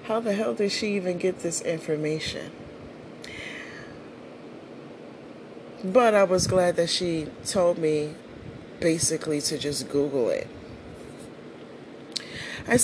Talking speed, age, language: 105 wpm, 40-59, English